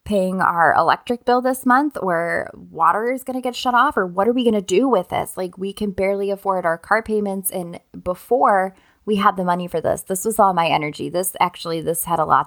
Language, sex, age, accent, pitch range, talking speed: English, female, 20-39, American, 165-205 Hz, 240 wpm